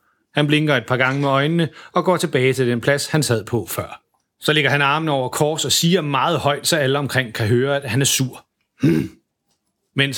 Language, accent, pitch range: Danish, native, 120-155 Hz